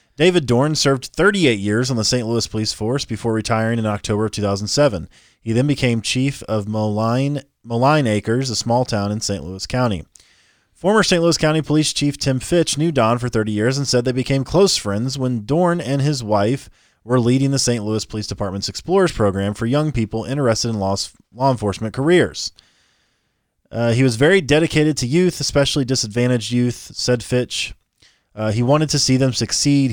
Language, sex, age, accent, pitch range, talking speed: English, male, 20-39, American, 110-140 Hz, 180 wpm